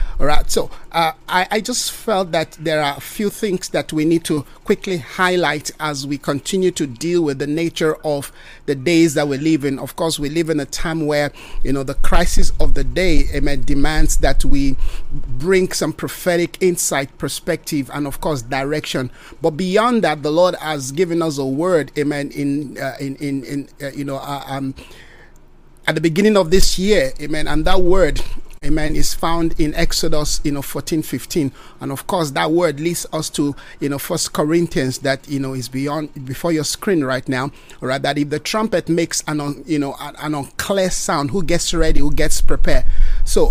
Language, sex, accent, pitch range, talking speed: English, male, Nigerian, 145-175 Hz, 205 wpm